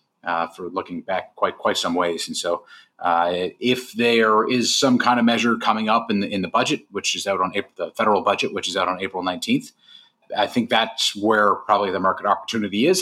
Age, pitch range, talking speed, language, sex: 30-49, 95-120 Hz, 220 wpm, English, male